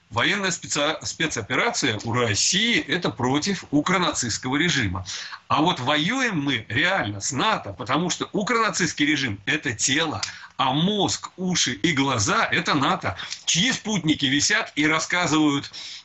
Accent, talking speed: native, 125 wpm